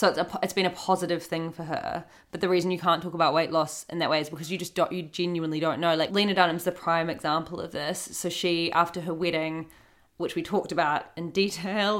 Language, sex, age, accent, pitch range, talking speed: English, female, 20-39, Australian, 160-180 Hz, 250 wpm